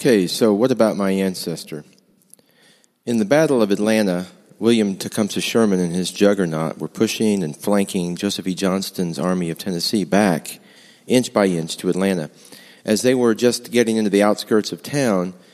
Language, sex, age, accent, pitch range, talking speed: English, male, 40-59, American, 90-110 Hz, 165 wpm